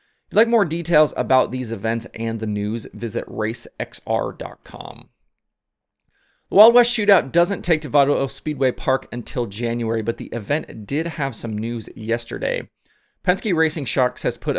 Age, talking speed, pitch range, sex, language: 30-49, 155 wpm, 110-140 Hz, male, English